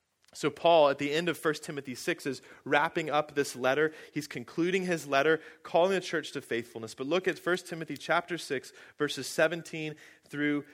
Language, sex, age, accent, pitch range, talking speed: English, male, 30-49, American, 130-175 Hz, 185 wpm